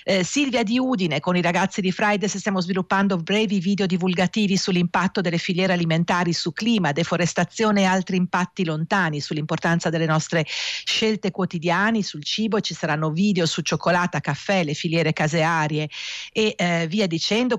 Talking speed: 155 wpm